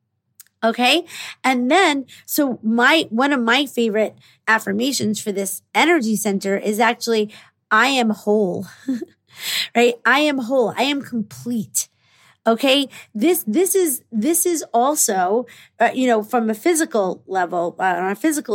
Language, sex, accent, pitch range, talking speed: English, female, American, 200-255 Hz, 140 wpm